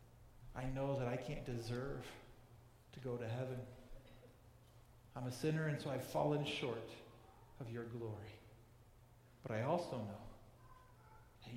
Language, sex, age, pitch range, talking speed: English, male, 50-69, 115-140 Hz, 135 wpm